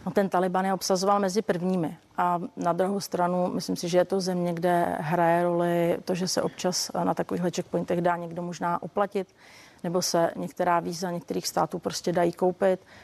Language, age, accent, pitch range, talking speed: Czech, 30-49, native, 165-180 Hz, 185 wpm